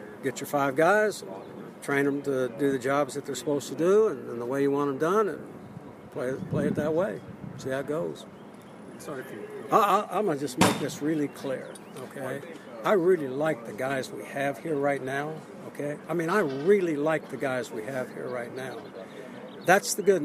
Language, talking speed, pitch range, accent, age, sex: English, 200 wpm, 140-195 Hz, American, 60-79, male